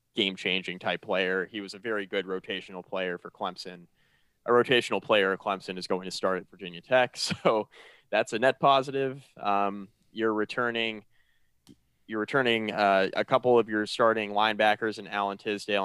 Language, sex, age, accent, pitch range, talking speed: English, male, 20-39, American, 95-105 Hz, 165 wpm